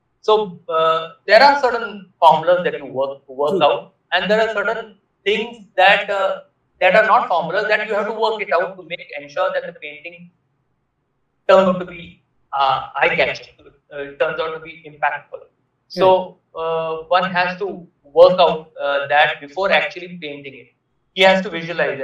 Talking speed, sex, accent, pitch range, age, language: 175 wpm, male, Indian, 140-185 Hz, 30-49, English